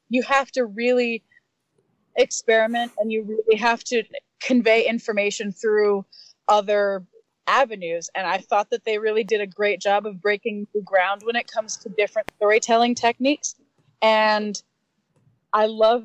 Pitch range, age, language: 205-245 Hz, 20-39, English